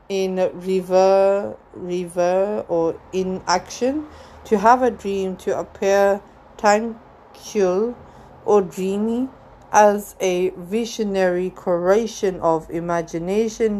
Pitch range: 170-205 Hz